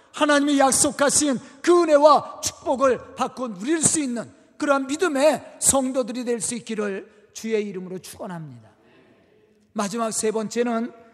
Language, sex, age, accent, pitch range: Korean, male, 40-59, native, 225-295 Hz